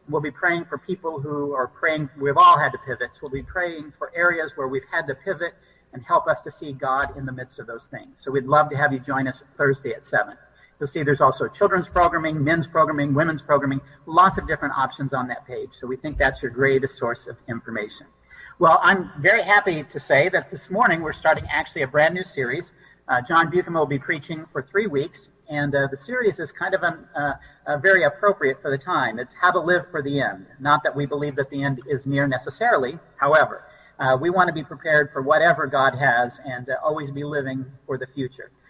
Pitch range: 135-165 Hz